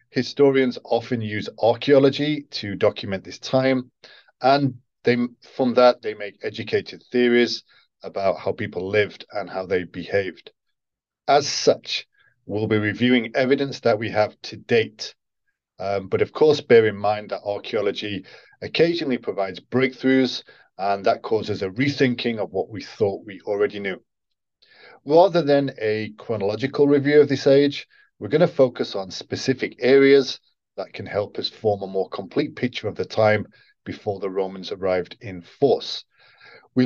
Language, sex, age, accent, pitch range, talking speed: English, male, 40-59, British, 110-145 Hz, 150 wpm